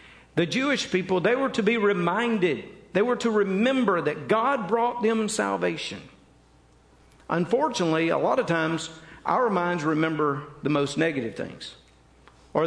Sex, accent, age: male, American, 50-69